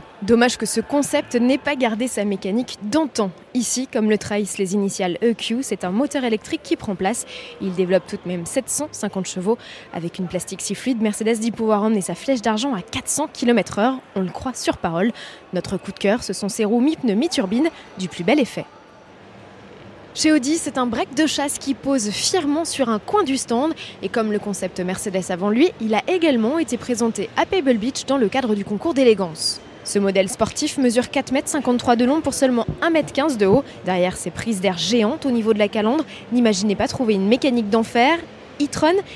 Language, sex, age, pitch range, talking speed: French, female, 20-39, 200-275 Hz, 205 wpm